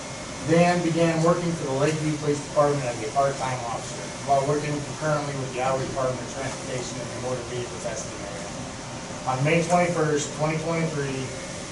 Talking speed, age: 160 wpm, 20-39